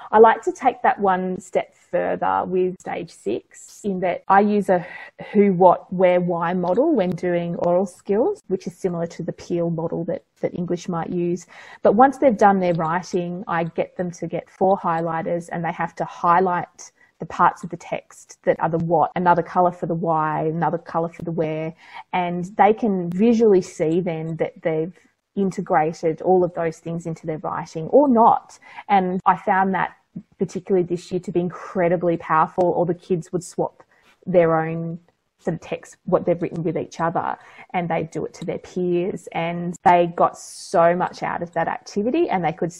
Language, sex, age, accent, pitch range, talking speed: English, female, 30-49, Australian, 170-190 Hz, 195 wpm